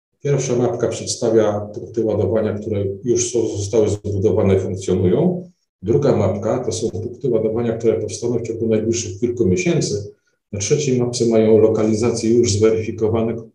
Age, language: 40-59, Polish